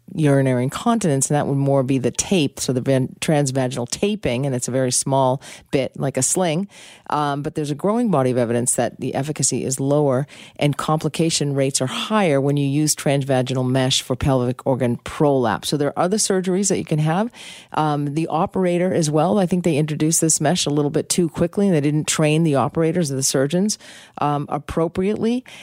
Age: 40-59